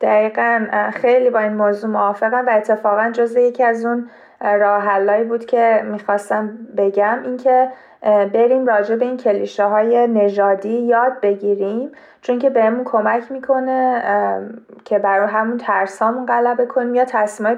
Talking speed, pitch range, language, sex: 140 wpm, 205-235 Hz, Persian, female